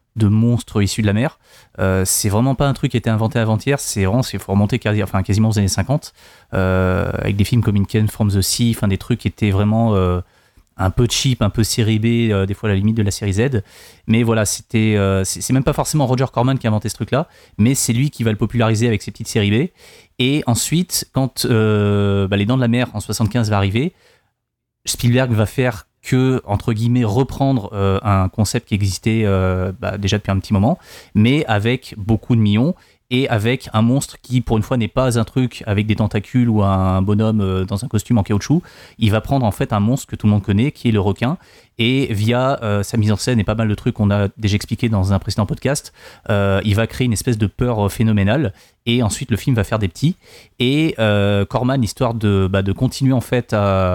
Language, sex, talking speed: French, male, 240 wpm